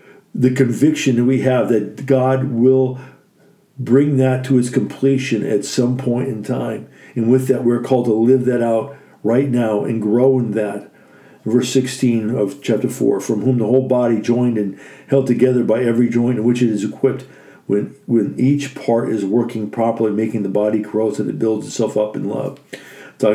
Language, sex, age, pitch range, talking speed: English, male, 50-69, 110-130 Hz, 195 wpm